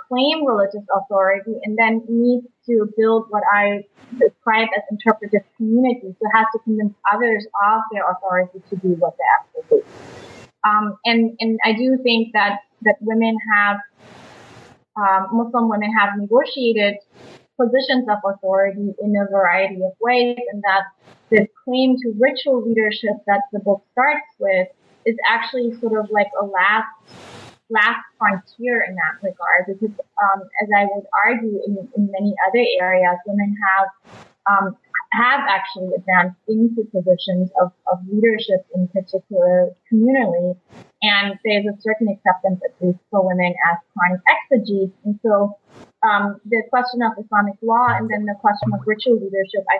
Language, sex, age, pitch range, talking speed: English, female, 20-39, 195-230 Hz, 155 wpm